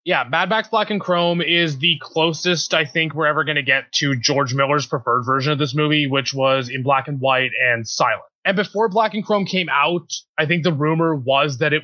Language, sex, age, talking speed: English, male, 20-39, 235 wpm